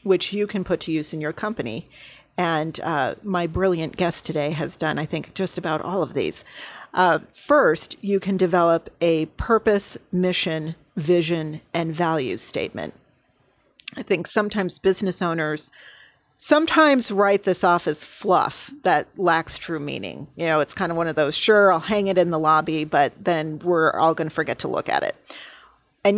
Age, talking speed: 40-59, 180 wpm